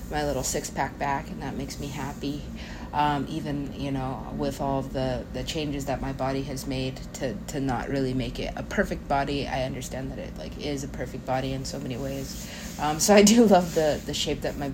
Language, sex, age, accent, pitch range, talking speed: English, female, 30-49, American, 130-165 Hz, 230 wpm